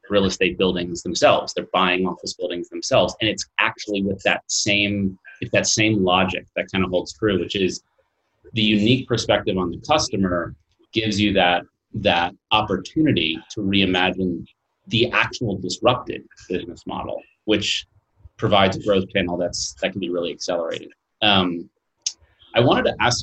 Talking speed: 155 wpm